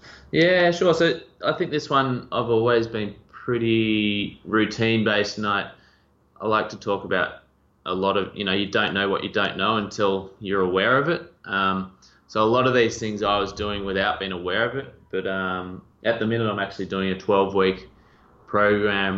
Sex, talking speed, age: male, 190 wpm, 20-39